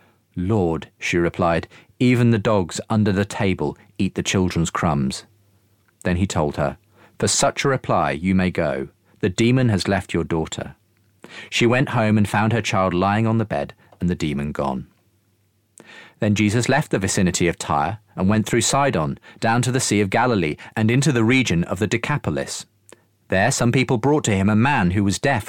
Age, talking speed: 40-59, 190 wpm